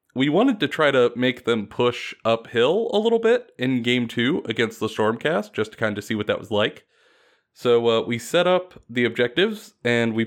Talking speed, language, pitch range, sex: 210 wpm, English, 110-185 Hz, male